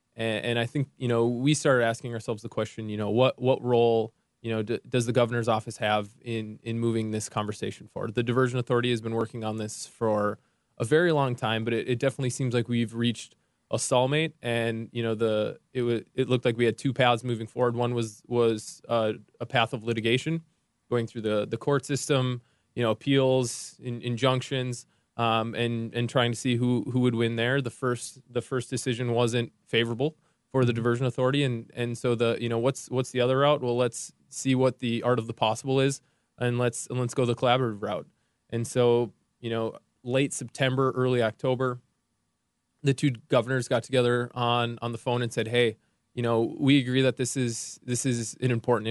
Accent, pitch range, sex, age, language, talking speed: American, 115-130 Hz, male, 20-39, English, 205 wpm